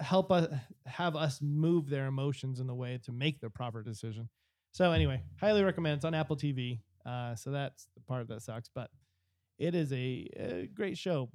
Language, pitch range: English, 120-175 Hz